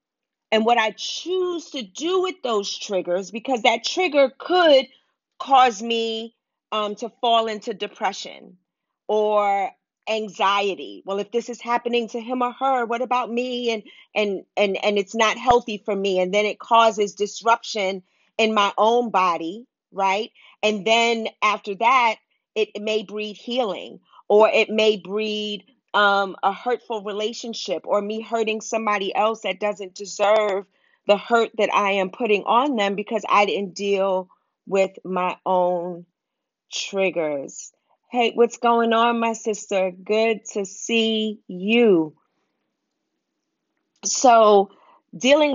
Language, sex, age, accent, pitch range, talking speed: English, female, 40-59, American, 195-235 Hz, 140 wpm